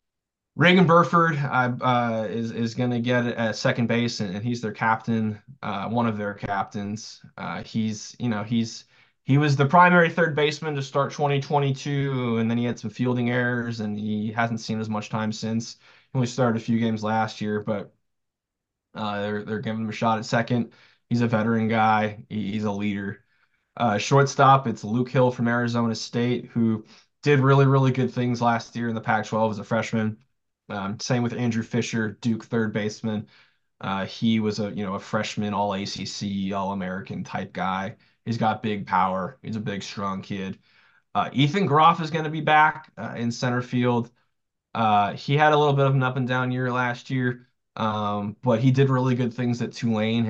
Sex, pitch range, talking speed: male, 110-125 Hz, 195 wpm